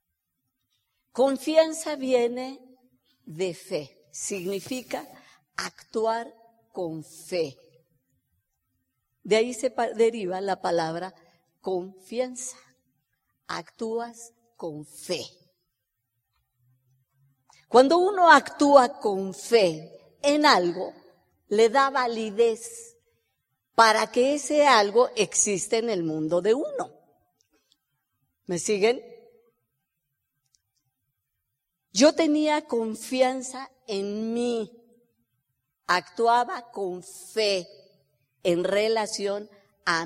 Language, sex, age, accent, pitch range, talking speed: Spanish, female, 50-69, American, 145-235 Hz, 75 wpm